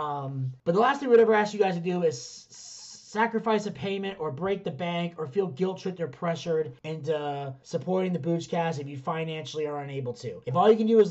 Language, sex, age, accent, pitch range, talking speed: English, male, 30-49, American, 160-210 Hz, 240 wpm